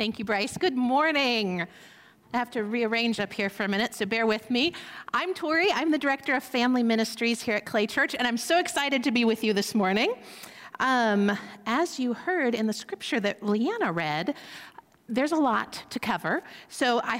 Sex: female